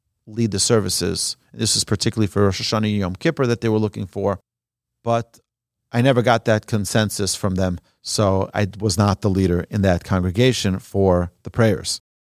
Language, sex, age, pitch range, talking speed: English, male, 40-59, 105-130 Hz, 175 wpm